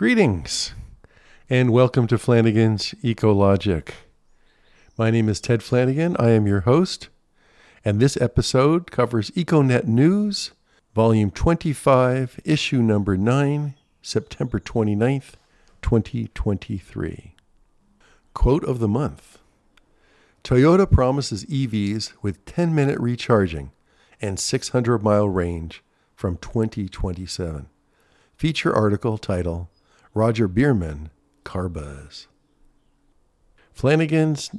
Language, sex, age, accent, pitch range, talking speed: English, male, 50-69, American, 90-130 Hz, 90 wpm